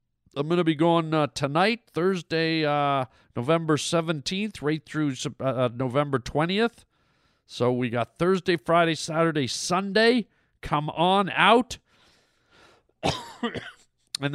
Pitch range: 140-180 Hz